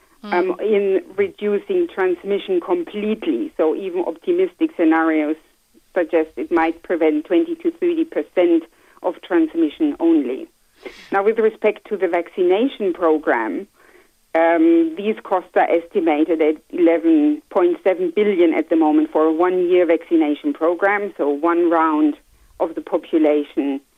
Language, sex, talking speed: English, female, 125 wpm